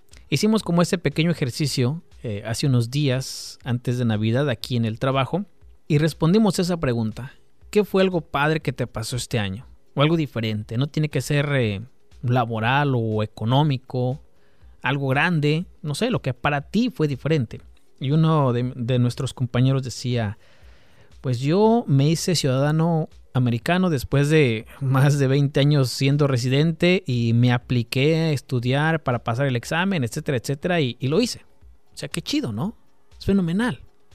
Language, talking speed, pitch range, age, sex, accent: Spanish, 165 wpm, 120-155 Hz, 30-49, male, Mexican